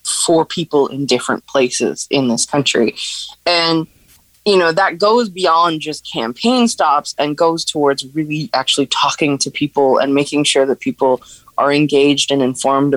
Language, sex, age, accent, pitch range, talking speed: English, female, 20-39, American, 135-160 Hz, 155 wpm